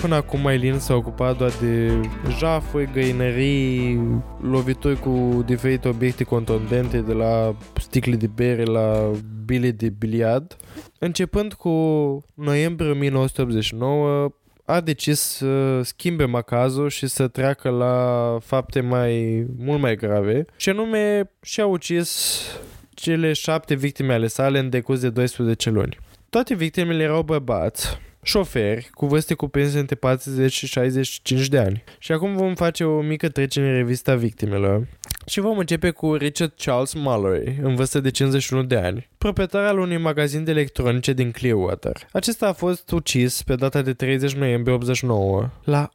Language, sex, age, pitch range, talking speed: Romanian, male, 20-39, 125-155 Hz, 145 wpm